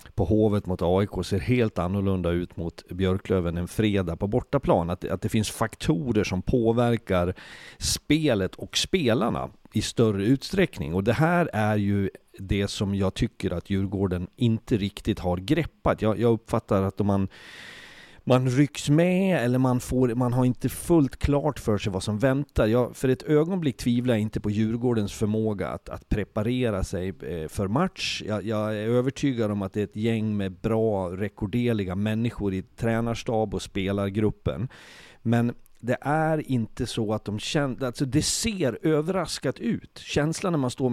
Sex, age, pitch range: male, 40-59, 100-130 Hz